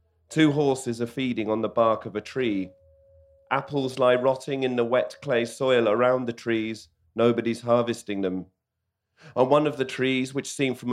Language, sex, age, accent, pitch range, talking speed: English, male, 40-59, British, 105-125 Hz, 175 wpm